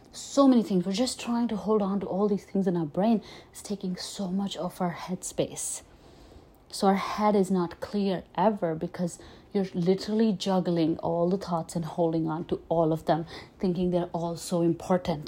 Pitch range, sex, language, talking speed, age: 170-205 Hz, female, English, 195 wpm, 30-49